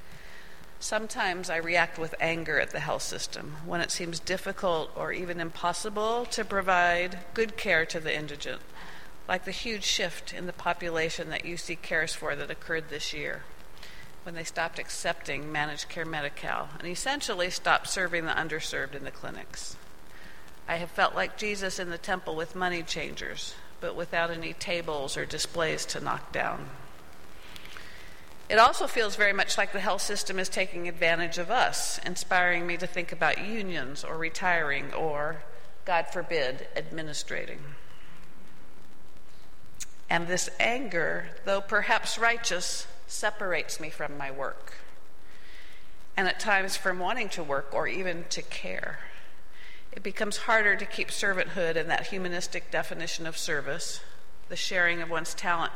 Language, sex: English, female